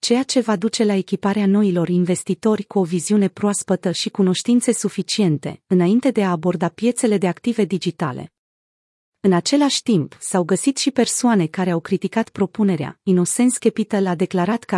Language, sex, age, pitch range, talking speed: Romanian, female, 30-49, 180-220 Hz, 160 wpm